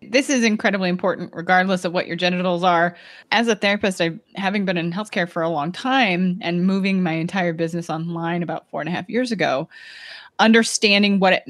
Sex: female